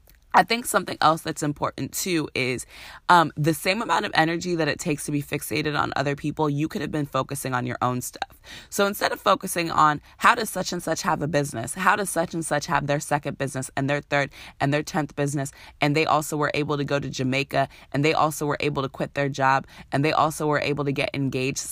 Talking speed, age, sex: 240 wpm, 20-39, female